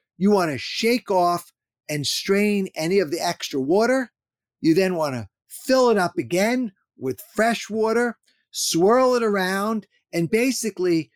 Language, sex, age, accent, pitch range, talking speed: English, male, 50-69, American, 160-215 Hz, 150 wpm